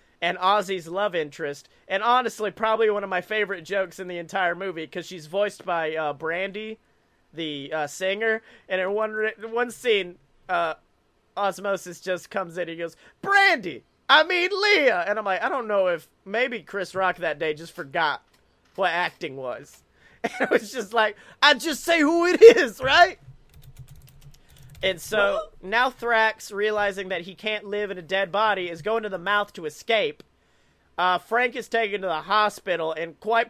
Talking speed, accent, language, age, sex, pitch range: 180 wpm, American, English, 30-49, male, 175-220 Hz